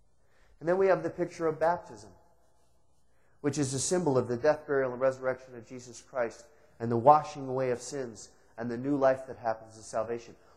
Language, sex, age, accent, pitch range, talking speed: English, male, 40-59, American, 130-200 Hz, 200 wpm